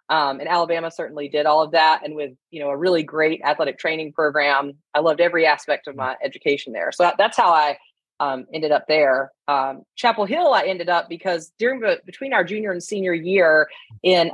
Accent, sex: American, female